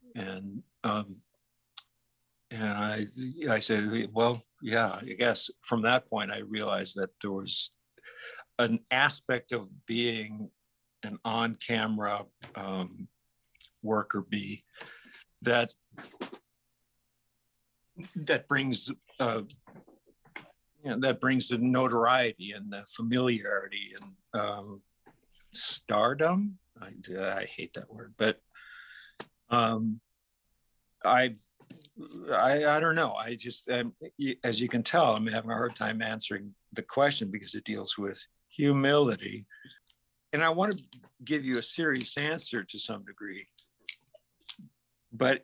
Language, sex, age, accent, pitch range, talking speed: English, male, 60-79, American, 105-130 Hz, 115 wpm